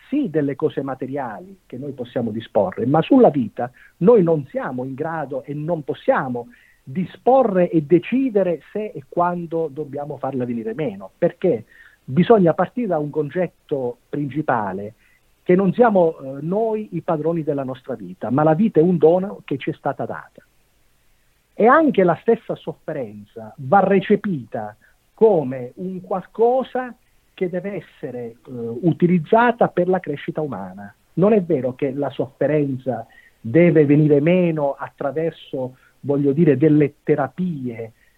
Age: 50-69